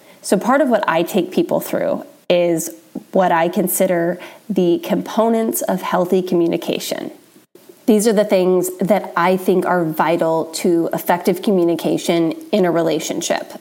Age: 20-39